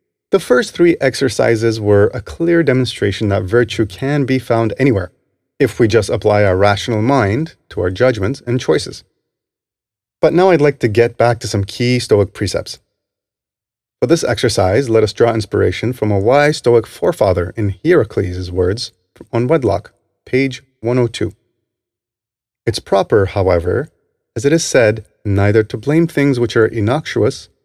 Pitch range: 100-130 Hz